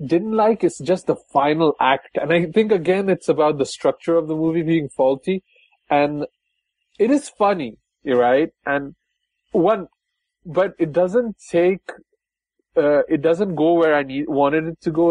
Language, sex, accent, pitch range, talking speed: English, male, Indian, 130-175 Hz, 170 wpm